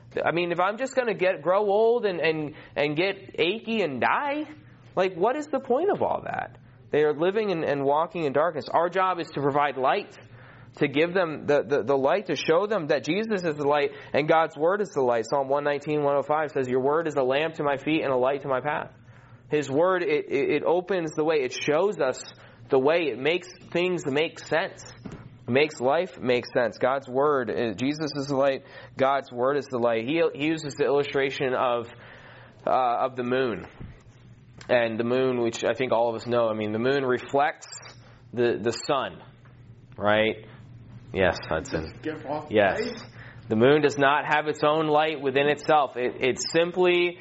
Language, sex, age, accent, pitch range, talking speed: English, male, 20-39, American, 125-165 Hz, 200 wpm